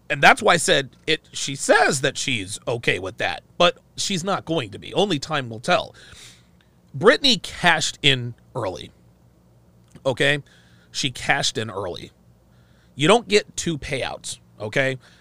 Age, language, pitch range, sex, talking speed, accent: 40-59, English, 125-180 Hz, male, 150 wpm, American